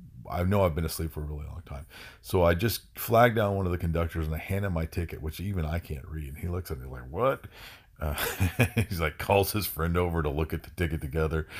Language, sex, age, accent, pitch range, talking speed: English, male, 50-69, American, 80-105 Hz, 260 wpm